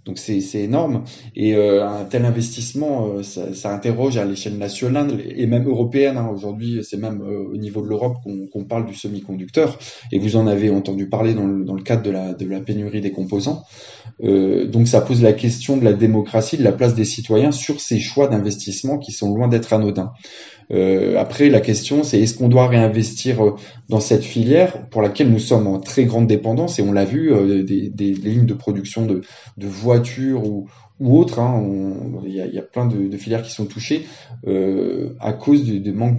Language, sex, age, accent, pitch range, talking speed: French, male, 20-39, French, 100-120 Hz, 210 wpm